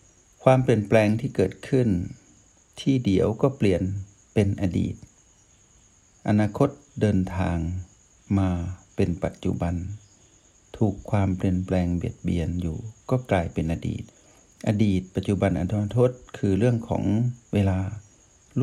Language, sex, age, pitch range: Thai, male, 60-79, 95-120 Hz